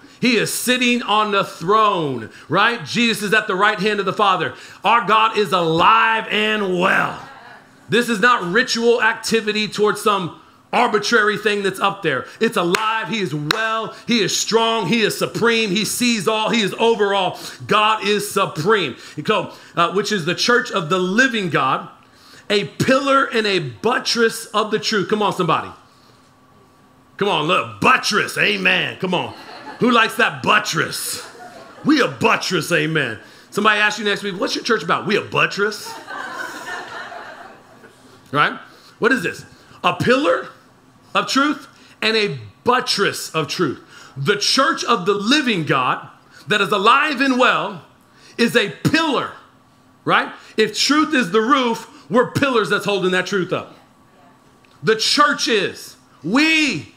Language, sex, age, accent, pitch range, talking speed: English, male, 40-59, American, 195-235 Hz, 155 wpm